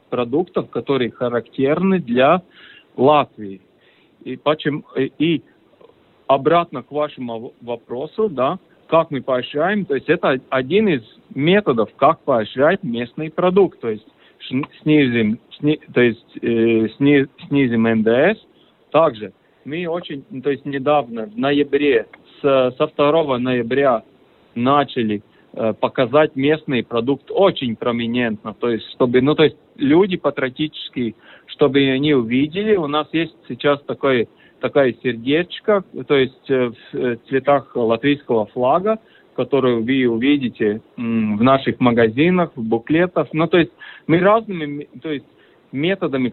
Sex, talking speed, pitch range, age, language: male, 125 wpm, 125-160 Hz, 40-59, Russian